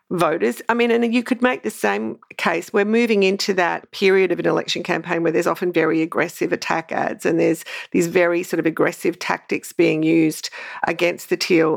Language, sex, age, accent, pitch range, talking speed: English, female, 50-69, Australian, 170-200 Hz, 200 wpm